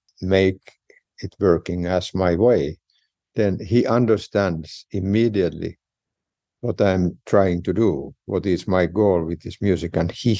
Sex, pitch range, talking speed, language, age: male, 85-100 Hz, 140 wpm, English, 60-79